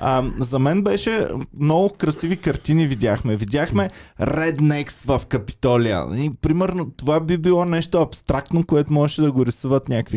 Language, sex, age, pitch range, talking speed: Bulgarian, male, 20-39, 115-150 Hz, 150 wpm